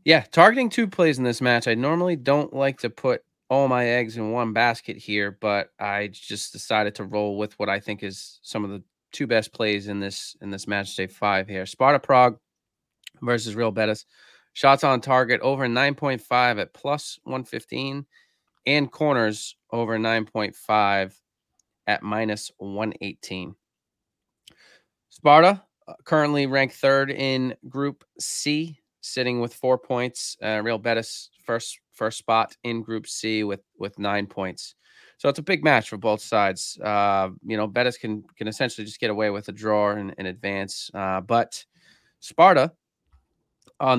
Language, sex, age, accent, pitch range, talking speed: English, male, 20-39, American, 105-130 Hz, 155 wpm